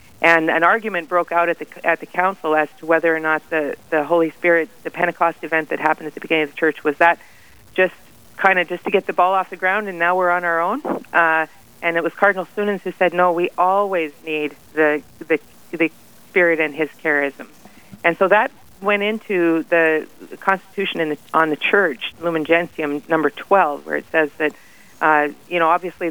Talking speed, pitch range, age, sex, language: 210 wpm, 160-190 Hz, 50-69, female, English